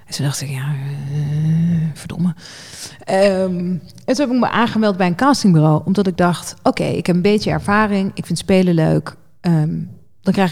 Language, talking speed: Dutch, 195 wpm